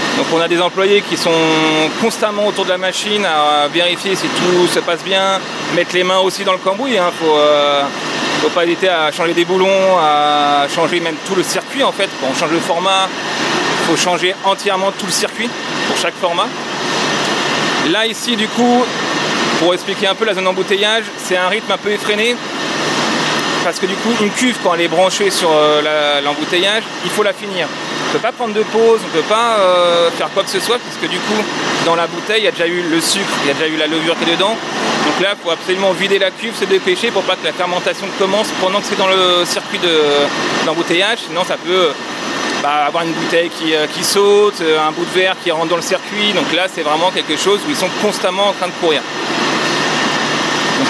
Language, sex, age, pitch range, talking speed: French, male, 30-49, 170-205 Hz, 225 wpm